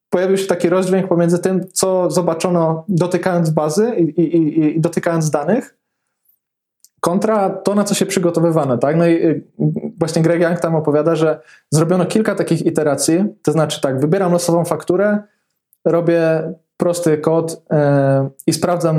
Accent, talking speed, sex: native, 150 wpm, male